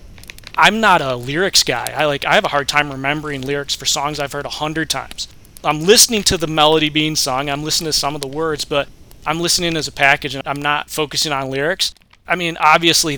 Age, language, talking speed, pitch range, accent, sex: 20-39, English, 230 wpm, 135-160 Hz, American, male